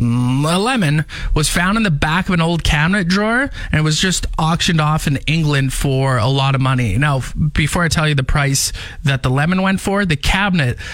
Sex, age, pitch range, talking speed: male, 20-39, 140-190 Hz, 215 wpm